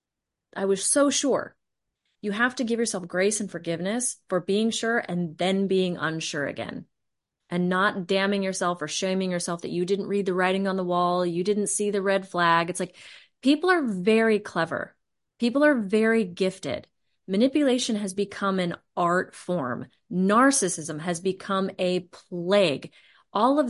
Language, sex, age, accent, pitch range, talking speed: English, female, 30-49, American, 180-240 Hz, 165 wpm